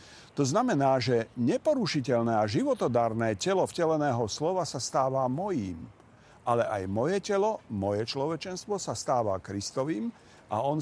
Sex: male